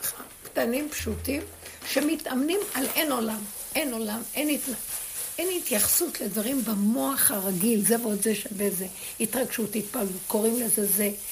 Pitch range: 220-295 Hz